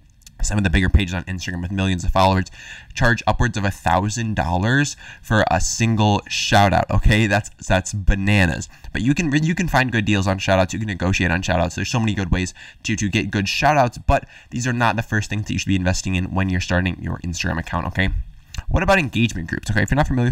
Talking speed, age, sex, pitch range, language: 240 wpm, 20-39, male, 90-115 Hz, English